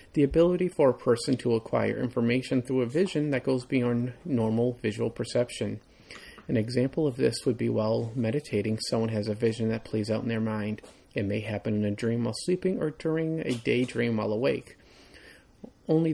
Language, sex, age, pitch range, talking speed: English, male, 40-59, 110-140 Hz, 185 wpm